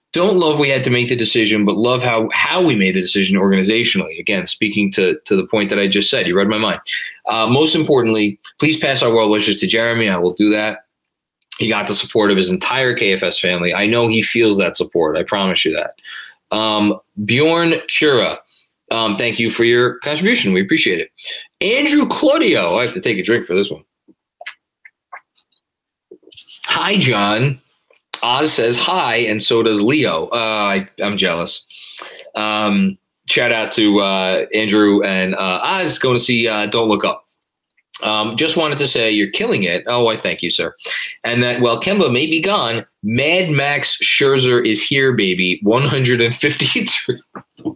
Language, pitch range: English, 105-145 Hz